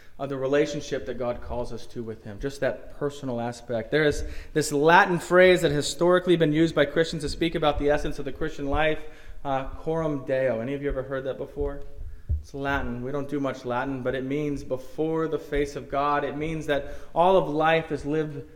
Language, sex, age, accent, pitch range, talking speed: English, male, 30-49, American, 140-165 Hz, 220 wpm